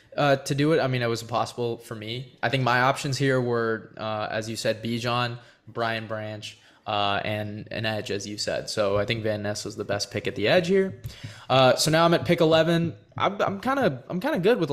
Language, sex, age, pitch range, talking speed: English, male, 20-39, 105-135 Hz, 240 wpm